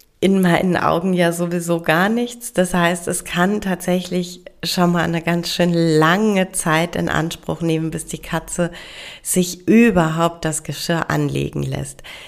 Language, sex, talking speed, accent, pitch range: German, female, 150 wpm, German, 155-180 Hz